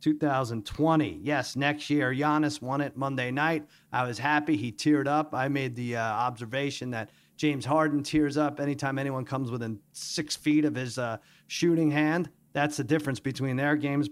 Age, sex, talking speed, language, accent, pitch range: 40-59, male, 180 wpm, English, American, 130-155 Hz